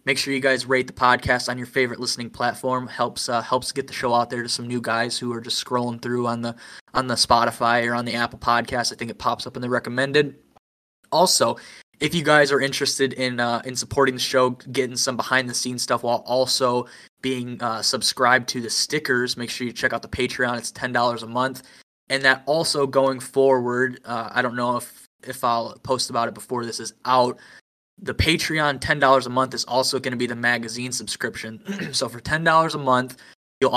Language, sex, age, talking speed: English, male, 20-39, 220 wpm